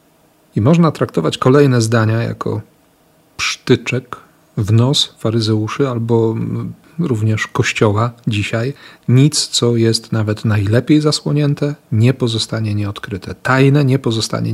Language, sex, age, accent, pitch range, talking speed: Polish, male, 40-59, native, 105-130 Hz, 105 wpm